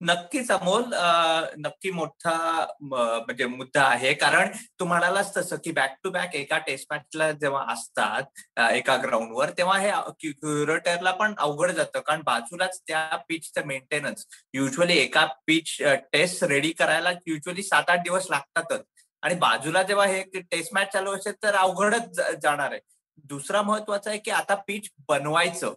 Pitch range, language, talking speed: 145-195 Hz, Marathi, 150 wpm